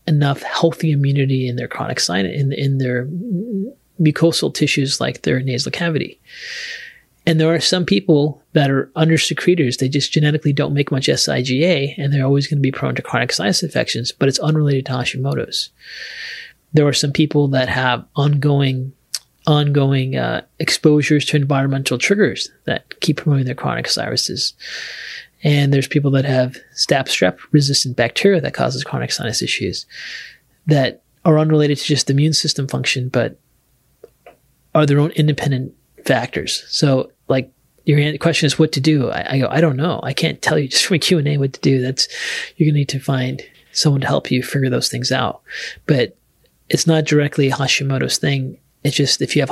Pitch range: 135-155 Hz